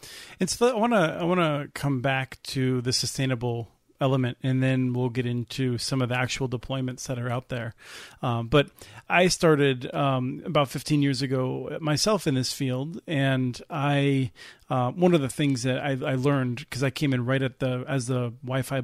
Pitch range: 125-140 Hz